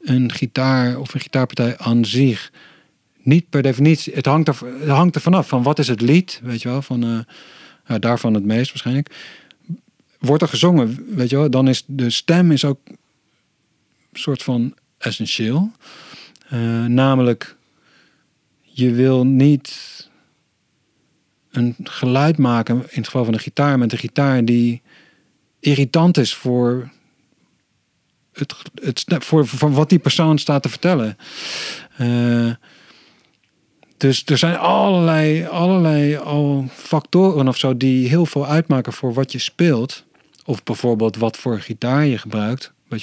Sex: male